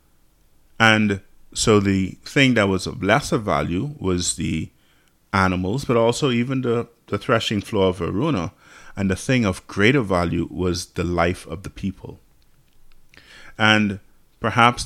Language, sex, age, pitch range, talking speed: English, male, 30-49, 90-115 Hz, 140 wpm